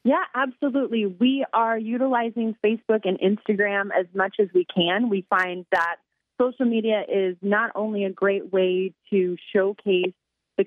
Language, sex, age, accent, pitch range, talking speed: English, female, 30-49, American, 175-210 Hz, 150 wpm